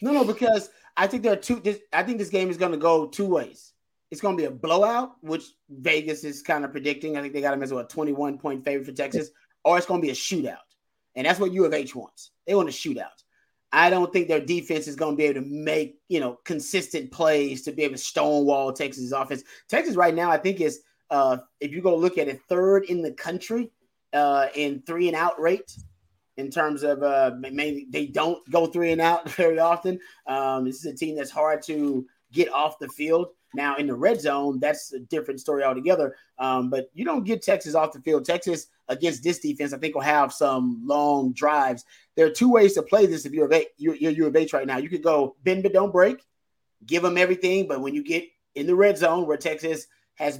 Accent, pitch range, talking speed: American, 140-175 Hz, 240 wpm